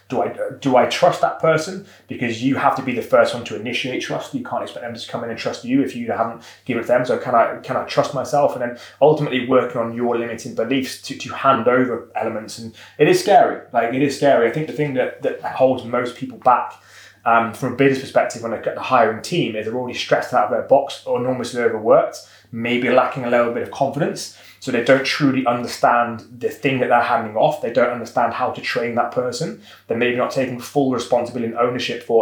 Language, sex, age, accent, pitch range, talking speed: English, male, 20-39, British, 115-135 Hz, 240 wpm